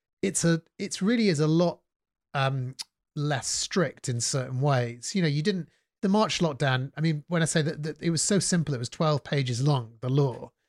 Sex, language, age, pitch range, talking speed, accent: male, English, 30-49, 135-160 Hz, 210 wpm, British